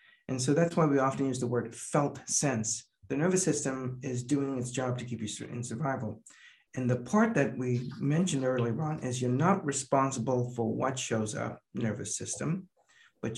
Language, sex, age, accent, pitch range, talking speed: English, male, 60-79, American, 125-155 Hz, 190 wpm